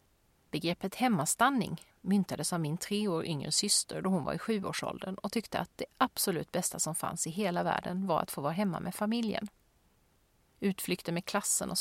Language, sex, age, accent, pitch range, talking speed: Swedish, female, 30-49, native, 175-220 Hz, 185 wpm